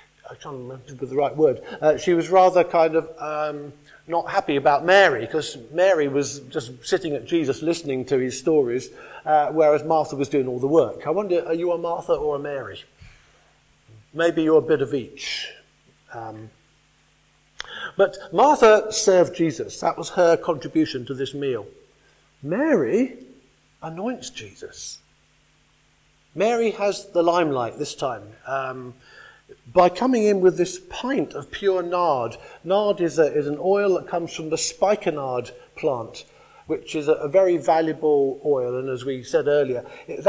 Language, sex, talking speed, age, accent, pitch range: English, male, 160 wpm, 50-69, British, 140-185 Hz